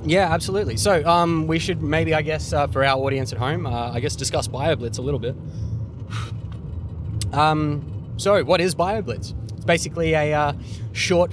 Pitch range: 115-150 Hz